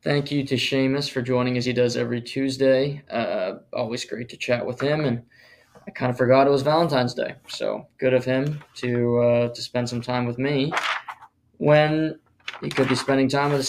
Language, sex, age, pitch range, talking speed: English, male, 20-39, 125-140 Hz, 205 wpm